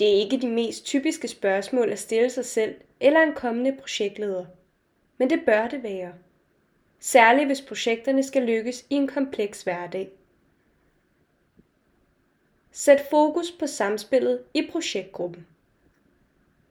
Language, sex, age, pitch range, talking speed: Danish, female, 20-39, 215-285 Hz, 125 wpm